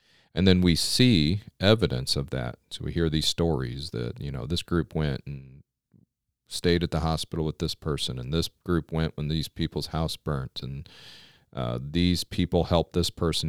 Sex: male